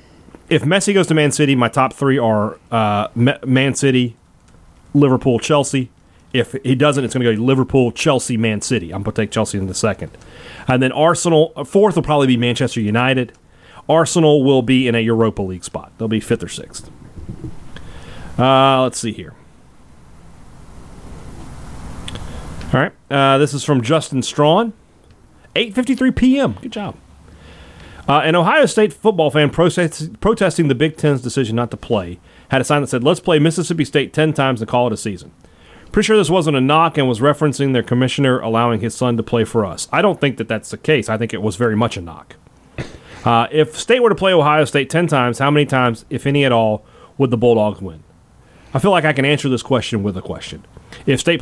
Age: 30-49